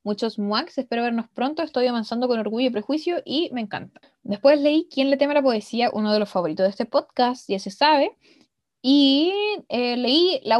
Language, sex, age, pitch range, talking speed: Spanish, female, 10-29, 215-300 Hz, 205 wpm